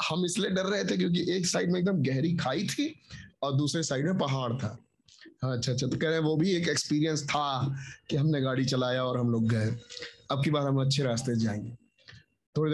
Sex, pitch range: male, 130-175 Hz